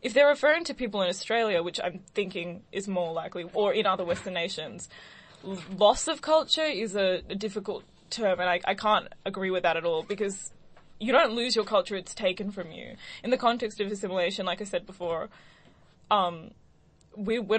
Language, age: English, 10-29